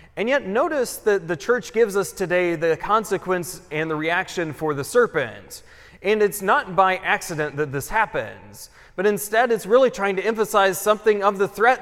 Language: English